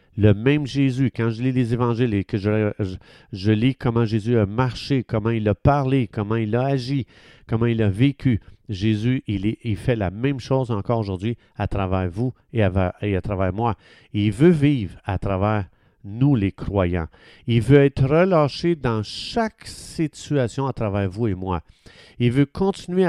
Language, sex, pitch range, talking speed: French, male, 105-135 Hz, 180 wpm